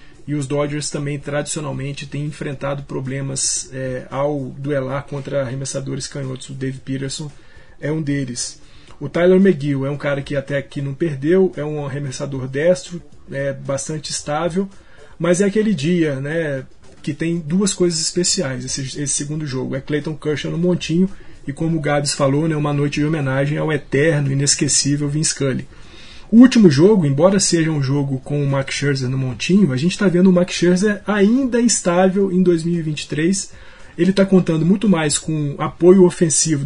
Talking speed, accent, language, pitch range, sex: 170 wpm, Brazilian, Portuguese, 140-180 Hz, male